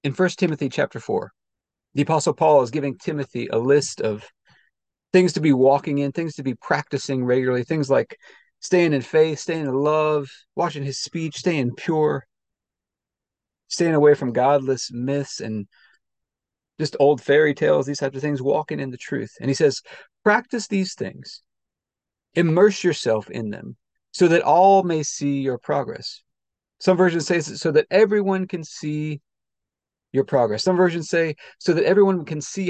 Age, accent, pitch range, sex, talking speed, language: 40-59, American, 135-185 Hz, male, 165 wpm, English